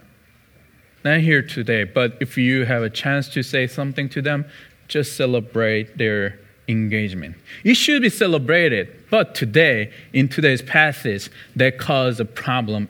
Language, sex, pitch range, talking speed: English, male, 120-155 Hz, 145 wpm